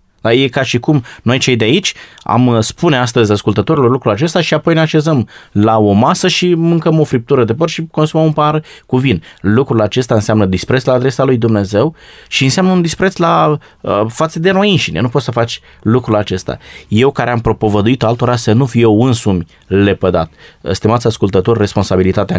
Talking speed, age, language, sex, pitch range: 190 wpm, 20-39, Romanian, male, 105-135 Hz